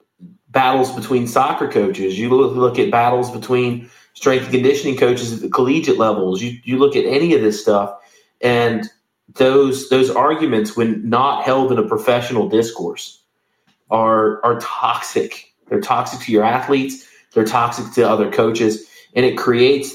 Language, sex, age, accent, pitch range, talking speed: English, male, 30-49, American, 115-140 Hz, 155 wpm